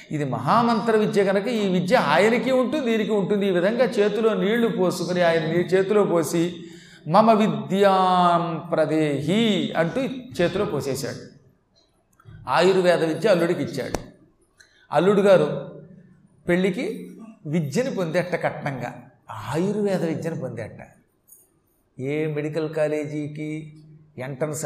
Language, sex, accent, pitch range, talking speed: Telugu, male, native, 150-205 Hz, 100 wpm